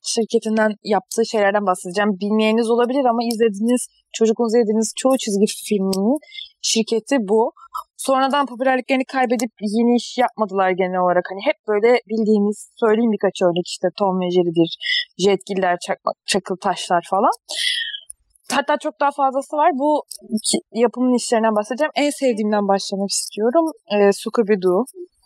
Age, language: 20-39, Turkish